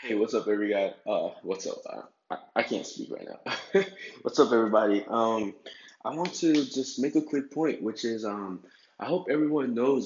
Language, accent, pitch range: English, American, 105-165 Hz